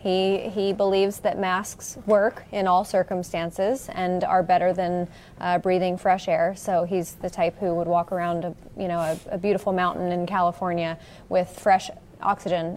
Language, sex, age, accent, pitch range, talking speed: English, female, 20-39, American, 180-235 Hz, 175 wpm